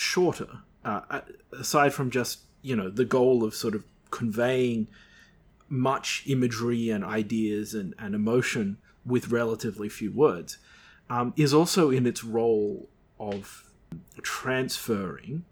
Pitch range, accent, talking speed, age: 110-130 Hz, Australian, 125 wpm, 30-49